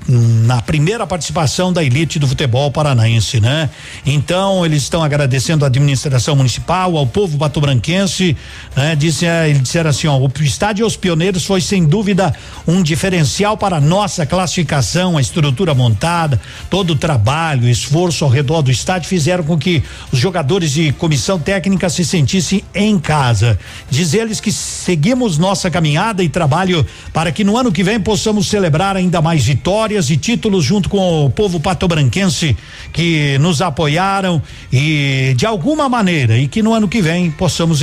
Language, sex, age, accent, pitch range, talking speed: Portuguese, male, 60-79, Brazilian, 140-185 Hz, 165 wpm